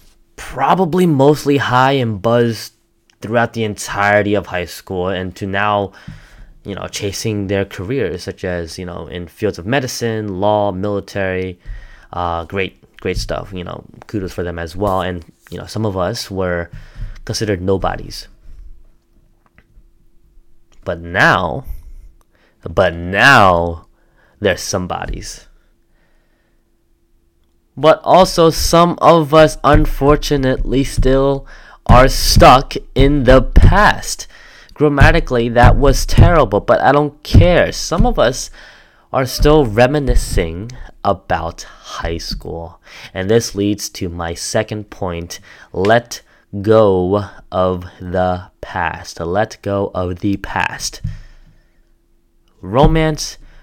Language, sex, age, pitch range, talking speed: English, male, 20-39, 90-130 Hz, 115 wpm